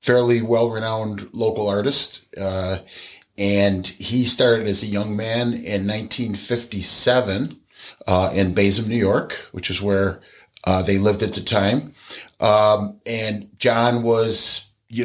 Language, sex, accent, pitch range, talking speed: English, male, American, 105-130 Hz, 130 wpm